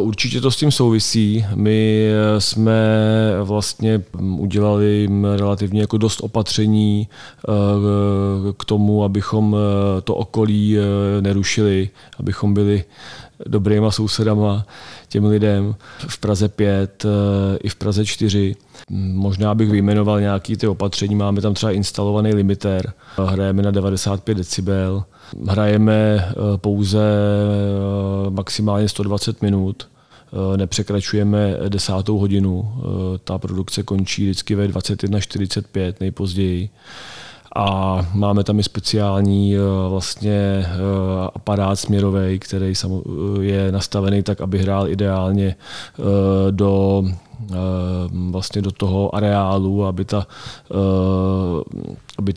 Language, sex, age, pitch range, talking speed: Czech, male, 30-49, 95-105 Hz, 95 wpm